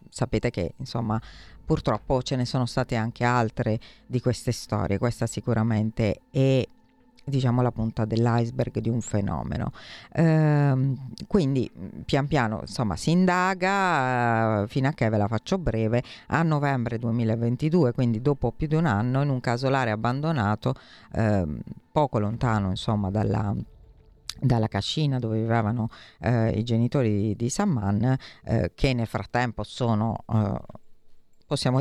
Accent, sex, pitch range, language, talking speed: native, female, 110-135 Hz, Italian, 135 wpm